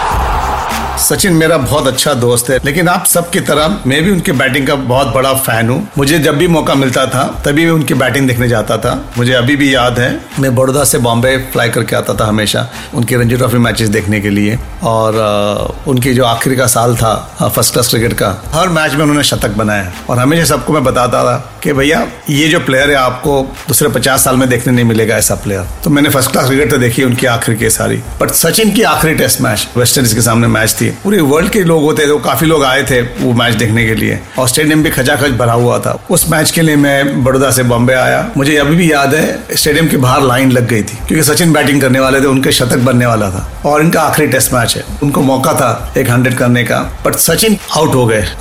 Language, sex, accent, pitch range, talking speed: Hindi, male, native, 120-145 Hz, 215 wpm